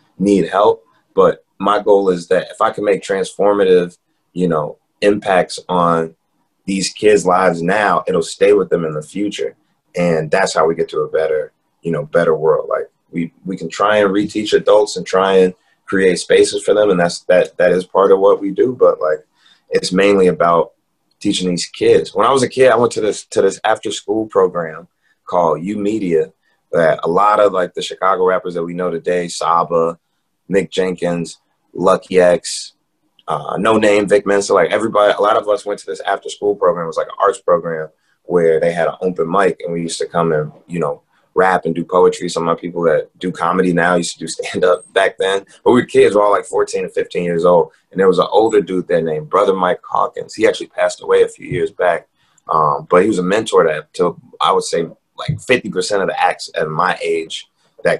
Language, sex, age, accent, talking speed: English, male, 30-49, American, 220 wpm